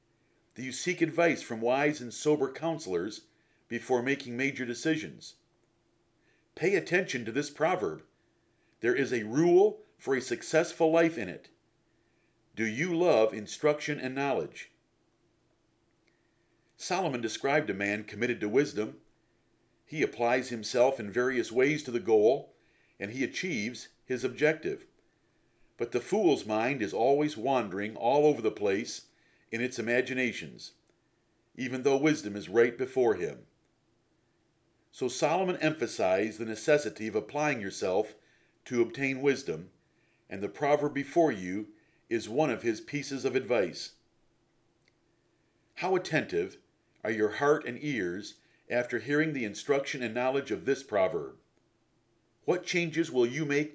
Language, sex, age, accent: English, male, 50-69, American